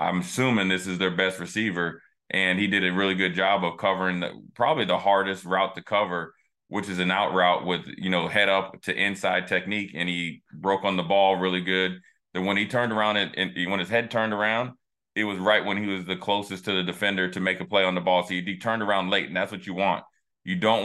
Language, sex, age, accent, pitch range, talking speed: English, male, 20-39, American, 90-105 Hz, 255 wpm